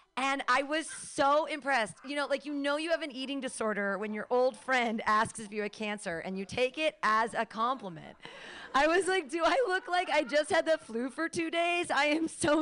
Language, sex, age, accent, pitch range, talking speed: English, female, 40-59, American, 195-280 Hz, 235 wpm